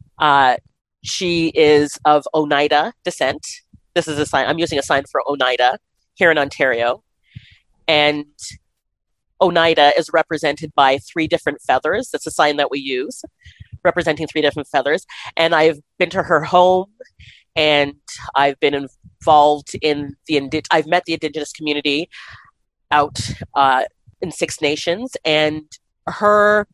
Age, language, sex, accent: 30-49, English, female, American